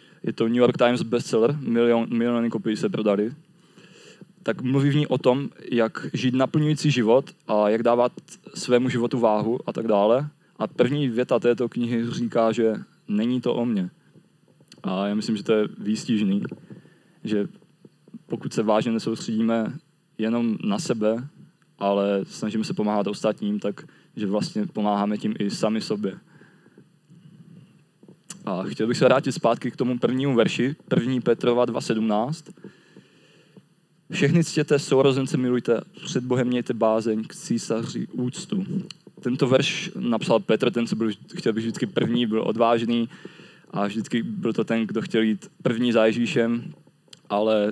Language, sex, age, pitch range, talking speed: Czech, male, 20-39, 115-150 Hz, 145 wpm